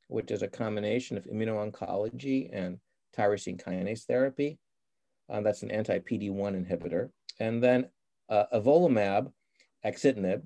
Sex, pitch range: male, 100-130 Hz